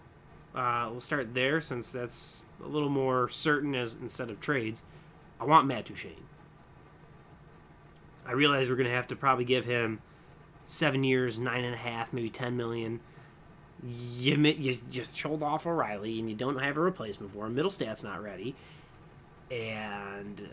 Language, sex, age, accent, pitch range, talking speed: English, male, 20-39, American, 120-165 Hz, 160 wpm